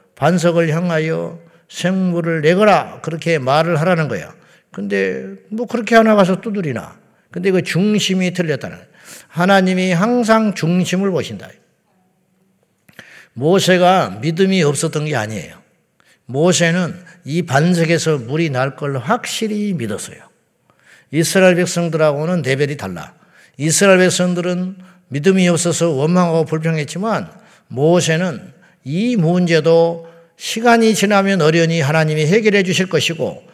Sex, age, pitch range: male, 50-69, 155-195 Hz